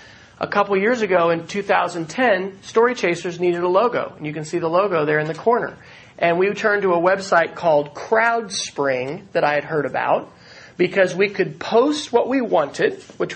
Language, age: English, 40-59